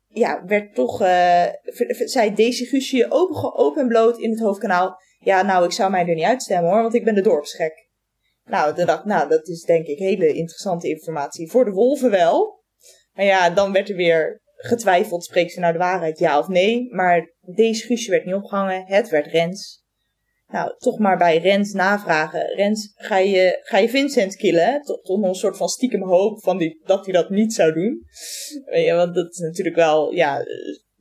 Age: 20-39